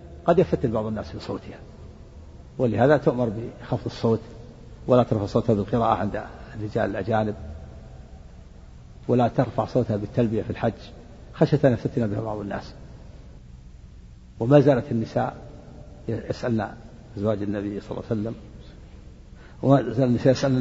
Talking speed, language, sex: 120 wpm, Arabic, male